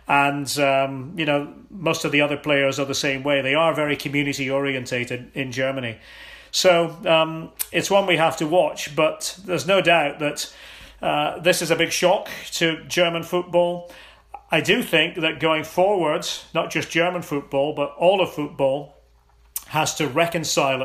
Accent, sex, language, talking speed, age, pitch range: British, male, English, 170 wpm, 40-59, 140-170 Hz